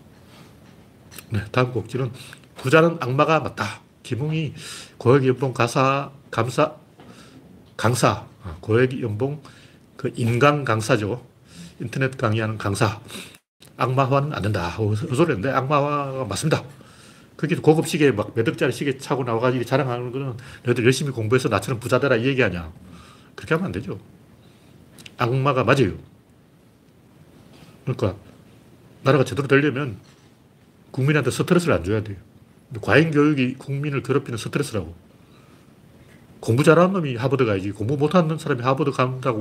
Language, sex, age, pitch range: Korean, male, 40-59, 115-150 Hz